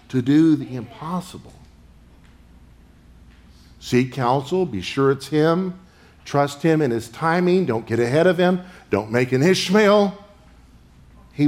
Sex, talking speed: male, 130 wpm